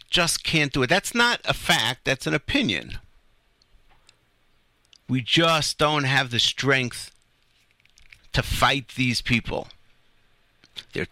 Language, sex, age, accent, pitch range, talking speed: English, male, 50-69, American, 130-170 Hz, 120 wpm